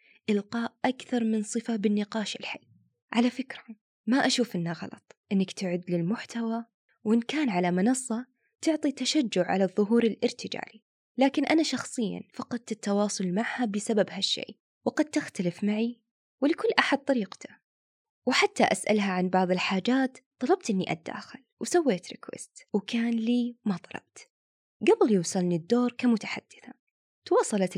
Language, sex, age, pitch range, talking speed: Arabic, female, 20-39, 195-260 Hz, 125 wpm